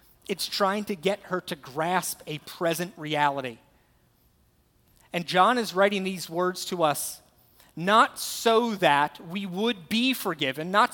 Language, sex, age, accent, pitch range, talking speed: English, male, 30-49, American, 160-200 Hz, 145 wpm